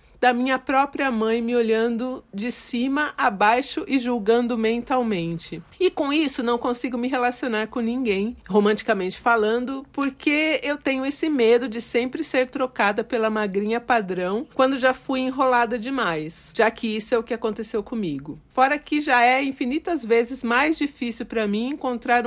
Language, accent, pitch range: Portuguese, Brazilian, 225-265 Hz